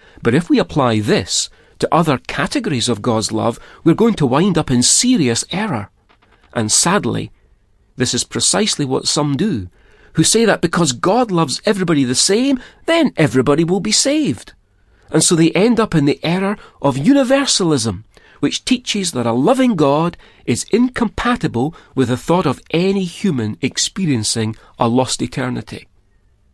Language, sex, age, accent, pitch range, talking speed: English, male, 40-59, British, 125-180 Hz, 155 wpm